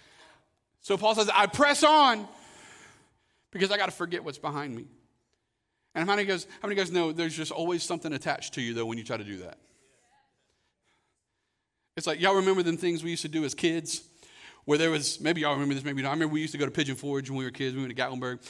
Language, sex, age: English, male, 40-59